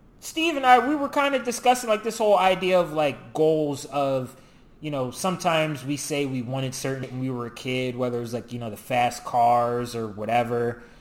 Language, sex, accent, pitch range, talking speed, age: English, male, American, 125-150 Hz, 220 wpm, 20-39